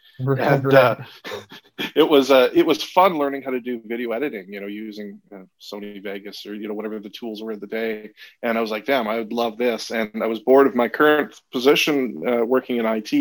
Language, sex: English, male